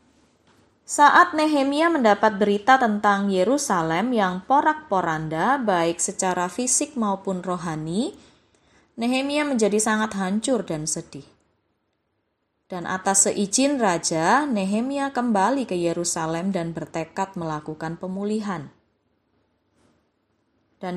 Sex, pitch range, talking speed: female, 175-235 Hz, 90 wpm